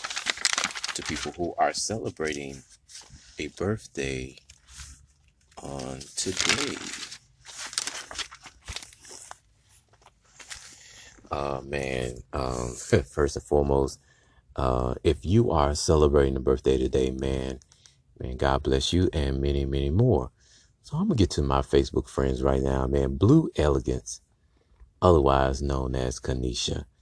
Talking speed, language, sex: 110 wpm, English, male